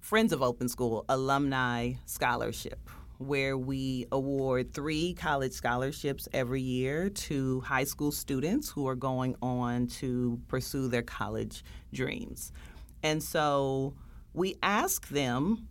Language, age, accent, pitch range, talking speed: English, 40-59, American, 125-155 Hz, 120 wpm